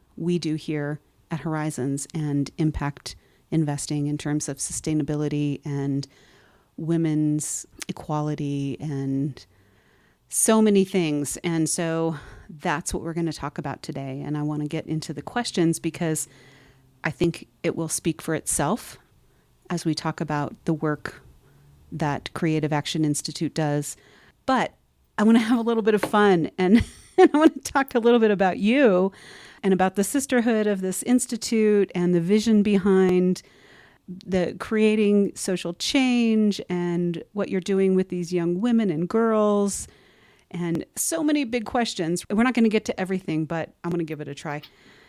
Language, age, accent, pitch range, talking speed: English, 40-59, American, 150-200 Hz, 160 wpm